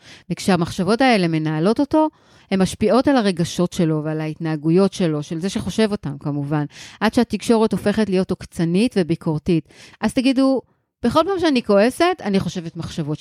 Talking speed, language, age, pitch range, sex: 145 wpm, Hebrew, 30-49, 165-220 Hz, female